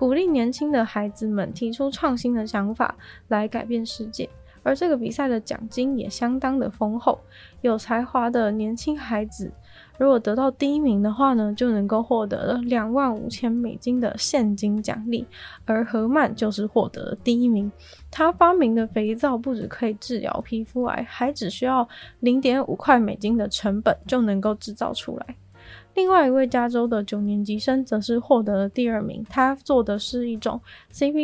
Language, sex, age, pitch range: Chinese, female, 20-39, 215-260 Hz